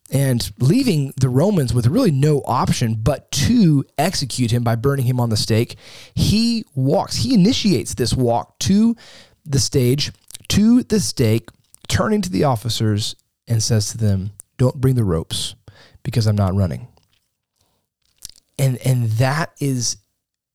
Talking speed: 145 wpm